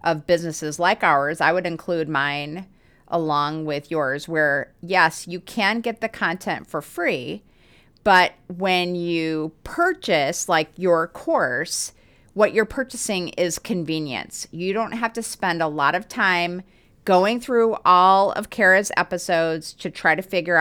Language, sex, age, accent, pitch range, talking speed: English, female, 30-49, American, 160-195 Hz, 150 wpm